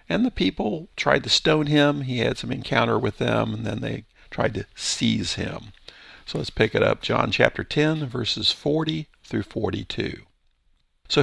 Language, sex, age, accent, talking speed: English, male, 50-69, American, 175 wpm